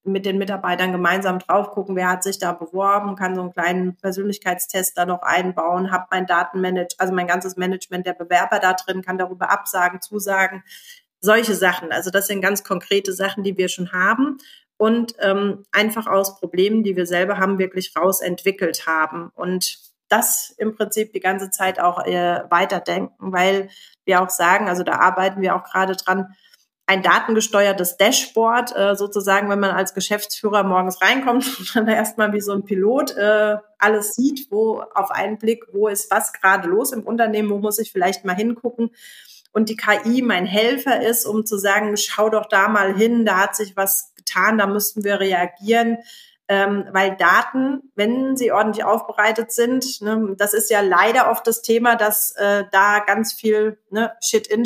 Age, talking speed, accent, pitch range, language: 30-49, 180 wpm, German, 185-220 Hz, German